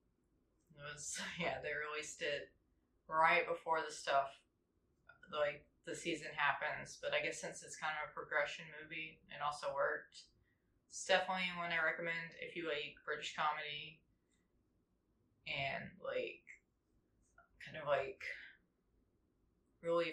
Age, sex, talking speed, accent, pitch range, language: 20-39, female, 130 wpm, American, 150-190 Hz, English